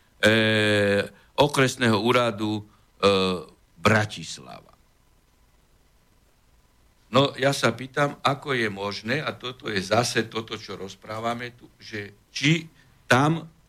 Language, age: Slovak, 60-79